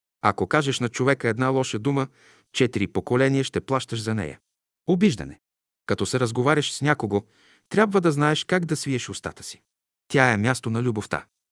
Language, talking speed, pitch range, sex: Bulgarian, 165 wpm, 115-150 Hz, male